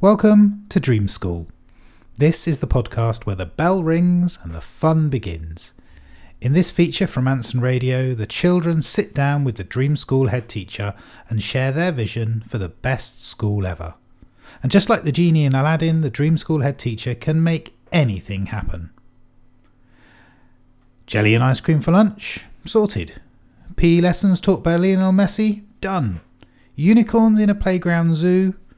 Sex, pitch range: male, 105-170 Hz